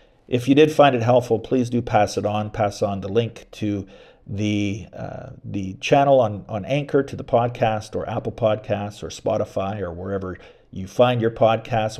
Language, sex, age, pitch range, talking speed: English, male, 50-69, 100-120 Hz, 185 wpm